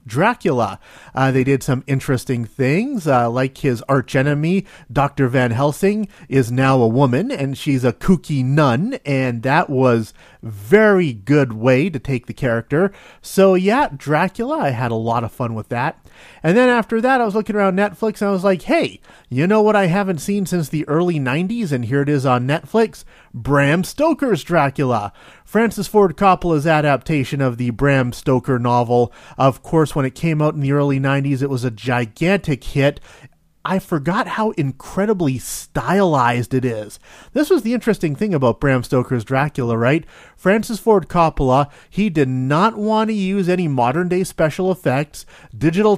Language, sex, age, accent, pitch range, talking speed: English, male, 30-49, American, 130-190 Hz, 175 wpm